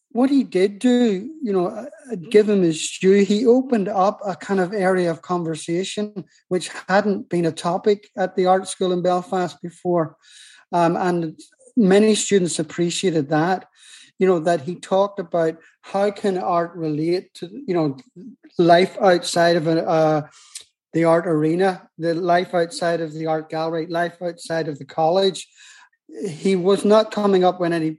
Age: 30-49